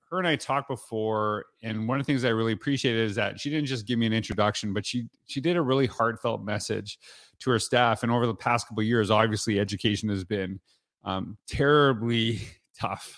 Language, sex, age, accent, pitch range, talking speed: English, male, 30-49, American, 105-120 Hz, 215 wpm